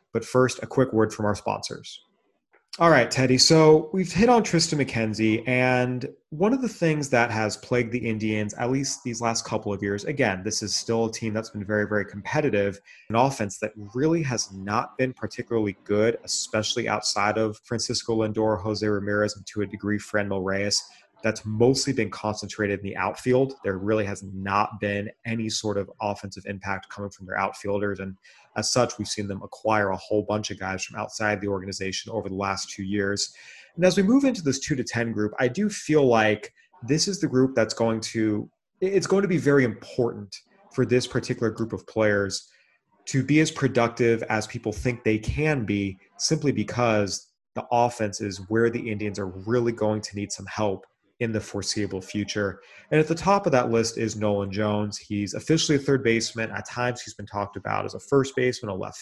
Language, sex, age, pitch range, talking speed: English, male, 30-49, 105-125 Hz, 200 wpm